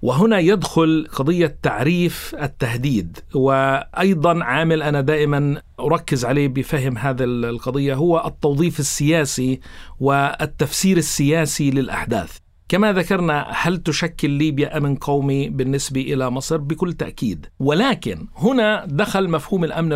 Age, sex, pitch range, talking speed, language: 50-69, male, 145-180 Hz, 110 wpm, Arabic